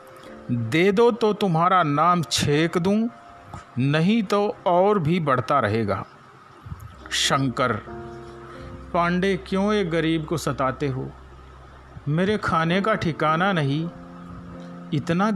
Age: 50-69